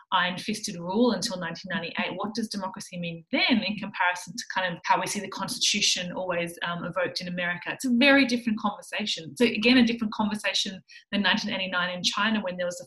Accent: Australian